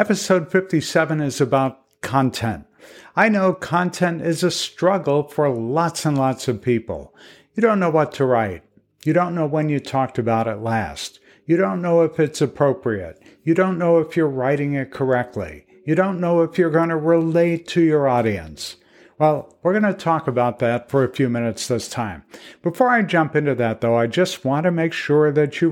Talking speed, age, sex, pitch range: 195 wpm, 60-79, male, 125-165 Hz